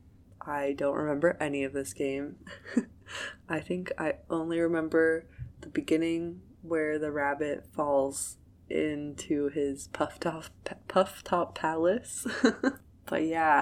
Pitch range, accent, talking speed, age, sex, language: 135-170 Hz, American, 120 wpm, 20-39, female, English